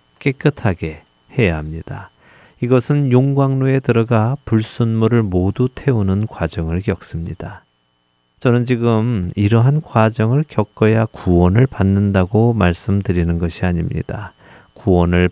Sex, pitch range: male, 90-120 Hz